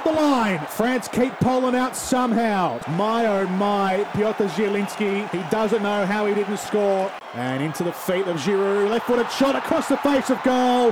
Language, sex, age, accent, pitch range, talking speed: English, male, 30-49, Australian, 175-230 Hz, 175 wpm